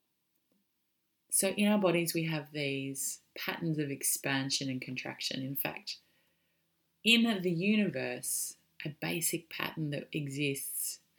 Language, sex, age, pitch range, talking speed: English, female, 30-49, 135-165 Hz, 120 wpm